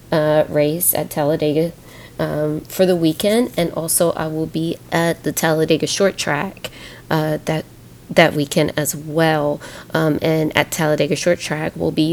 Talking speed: 160 wpm